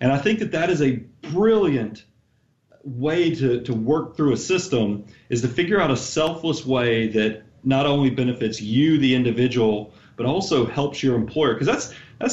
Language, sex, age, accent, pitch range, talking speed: English, male, 40-59, American, 115-145 Hz, 180 wpm